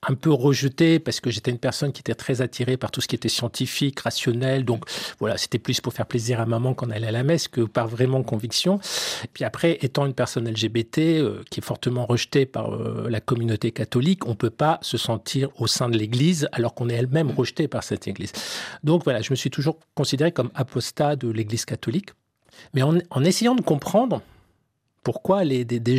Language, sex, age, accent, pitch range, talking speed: French, male, 40-59, French, 115-150 Hz, 215 wpm